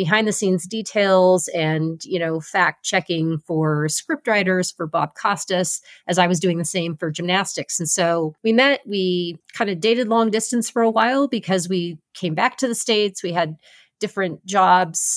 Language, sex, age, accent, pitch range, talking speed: English, female, 30-49, American, 175-220 Hz, 185 wpm